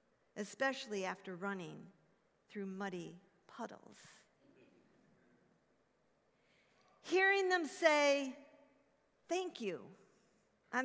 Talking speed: 65 wpm